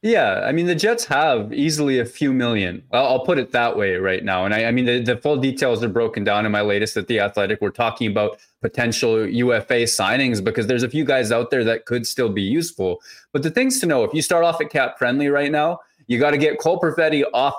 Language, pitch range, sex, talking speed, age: English, 115-145 Hz, male, 250 wpm, 20-39